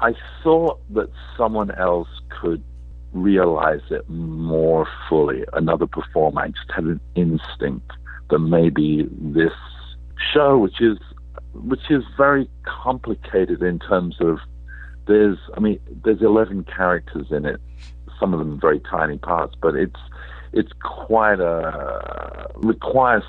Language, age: English, 60-79